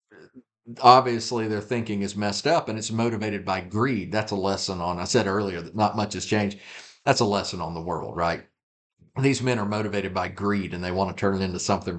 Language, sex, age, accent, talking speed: English, male, 50-69, American, 220 wpm